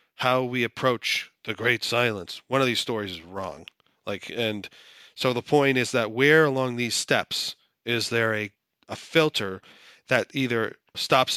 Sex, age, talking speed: male, 30-49, 165 wpm